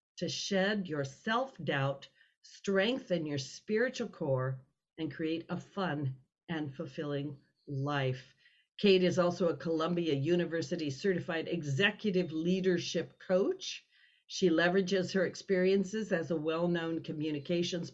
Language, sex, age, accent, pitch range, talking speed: English, female, 50-69, American, 160-200 Hz, 110 wpm